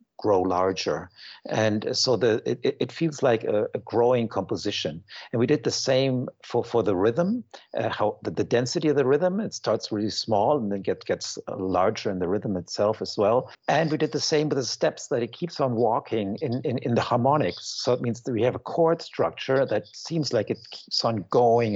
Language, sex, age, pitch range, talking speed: English, male, 60-79, 105-135 Hz, 220 wpm